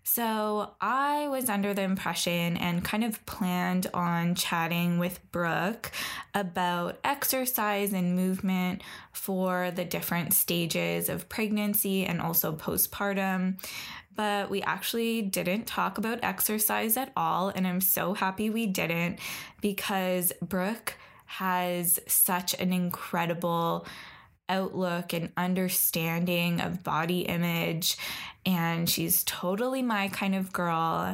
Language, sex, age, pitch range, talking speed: English, female, 10-29, 170-195 Hz, 120 wpm